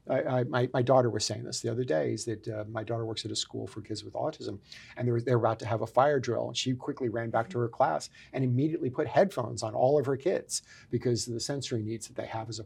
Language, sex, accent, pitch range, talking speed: English, male, American, 115-130 Hz, 295 wpm